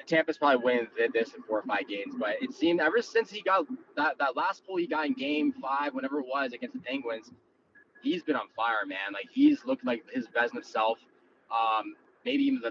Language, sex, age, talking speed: English, male, 20-39, 225 wpm